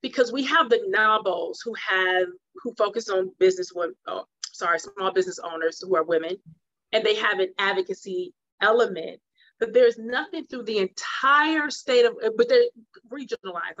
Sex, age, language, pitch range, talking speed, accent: female, 30-49, English, 185-235 Hz, 150 wpm, American